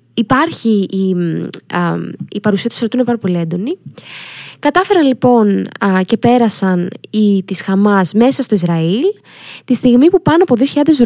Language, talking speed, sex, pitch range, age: Greek, 150 wpm, female, 185-270 Hz, 20-39